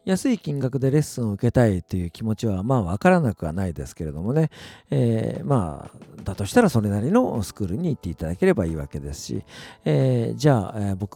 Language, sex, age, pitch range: Japanese, male, 50-69, 95-130 Hz